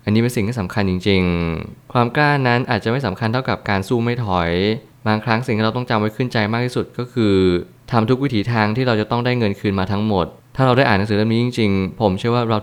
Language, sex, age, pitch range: Thai, male, 20-39, 100-120 Hz